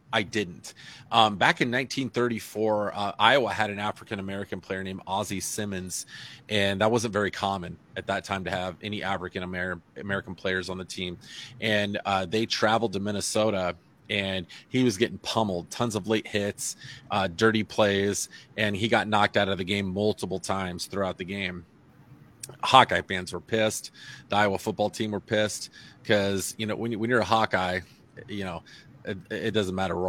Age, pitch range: 30-49, 95-110 Hz